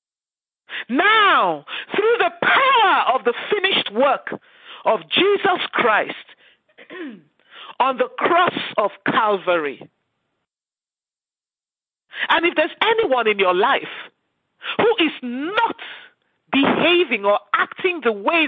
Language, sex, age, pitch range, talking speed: English, male, 50-69, 250-380 Hz, 100 wpm